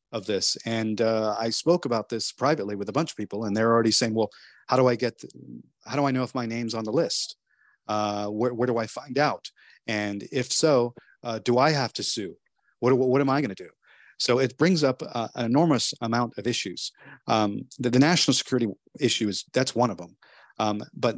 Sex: male